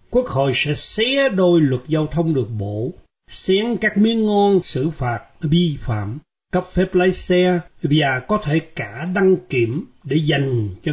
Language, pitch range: Vietnamese, 125-180 Hz